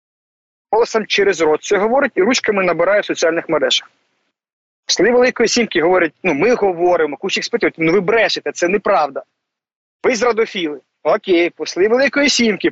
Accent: native